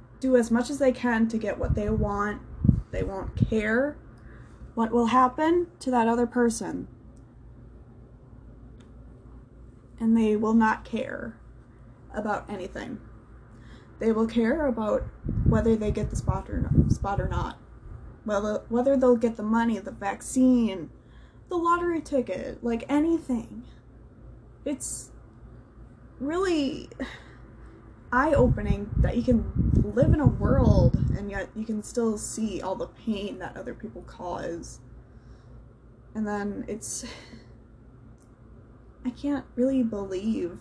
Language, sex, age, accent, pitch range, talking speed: English, female, 10-29, American, 205-255 Hz, 125 wpm